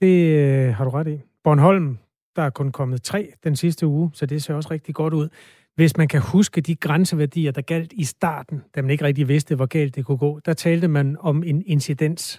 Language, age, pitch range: Danish, 30-49, 130-155 Hz